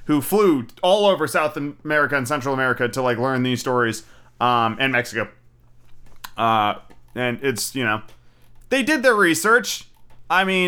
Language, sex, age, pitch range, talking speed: English, male, 30-49, 125-165 Hz, 155 wpm